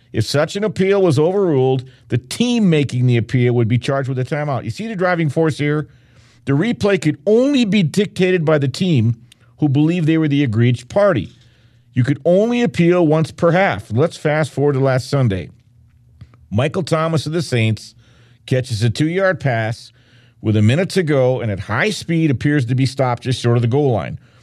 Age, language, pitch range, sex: 50-69, English, 120-160 Hz, male